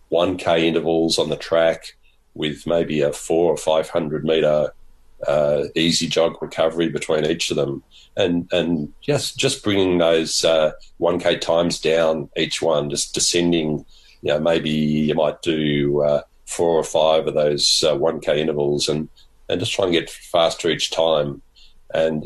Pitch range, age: 75-85 Hz, 40-59